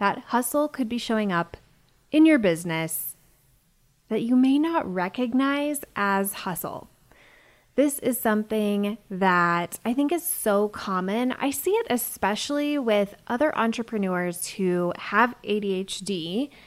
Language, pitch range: English, 190-255 Hz